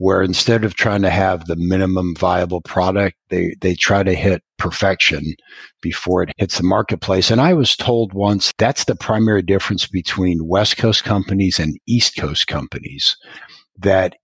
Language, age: English, 50-69